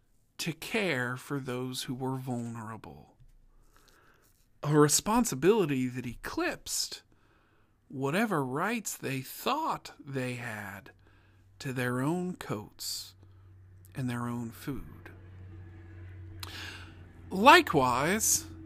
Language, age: English, 50-69